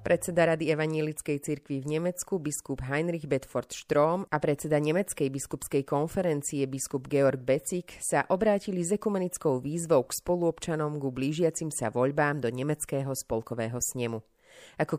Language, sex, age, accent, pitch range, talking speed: English, female, 30-49, Czech, 130-160 Hz, 130 wpm